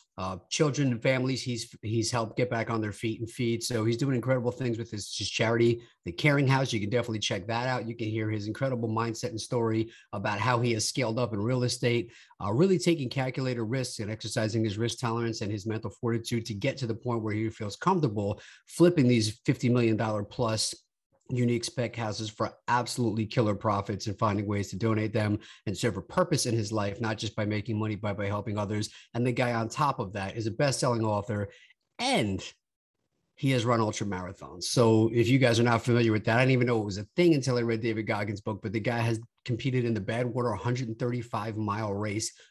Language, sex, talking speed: English, male, 220 wpm